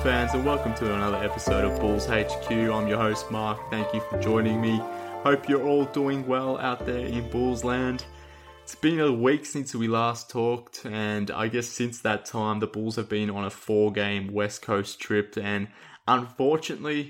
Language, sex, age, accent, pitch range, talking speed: English, male, 20-39, Australian, 100-115 Hz, 190 wpm